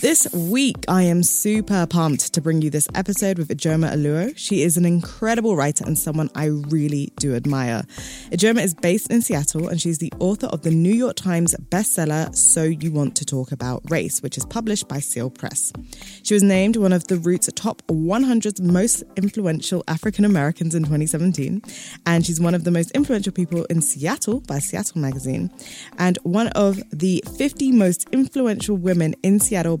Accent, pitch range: British, 150-200 Hz